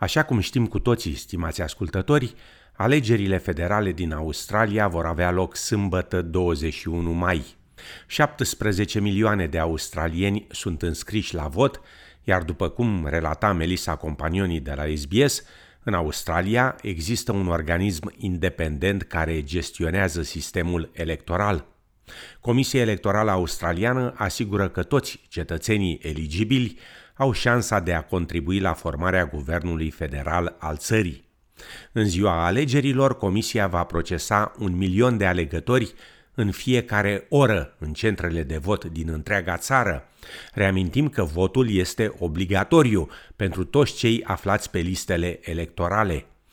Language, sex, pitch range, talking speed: Romanian, male, 85-105 Hz, 125 wpm